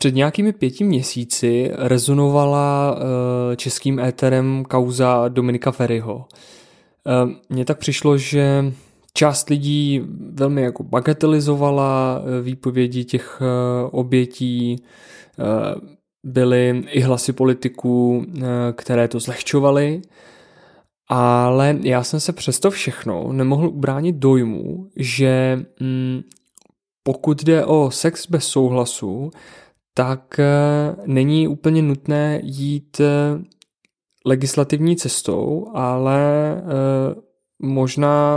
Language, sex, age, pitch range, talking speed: Czech, male, 20-39, 130-145 Hz, 85 wpm